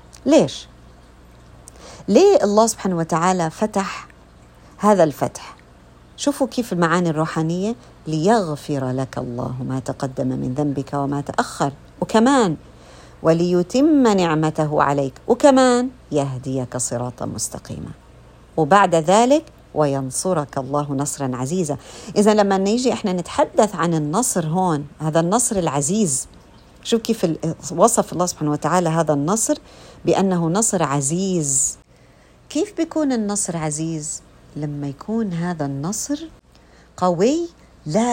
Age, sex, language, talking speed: 50-69, female, Arabic, 105 wpm